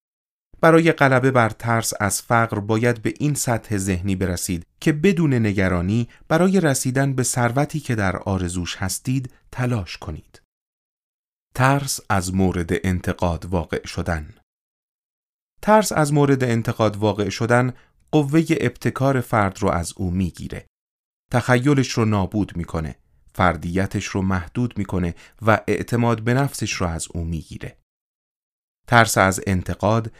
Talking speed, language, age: 130 wpm, Persian, 30-49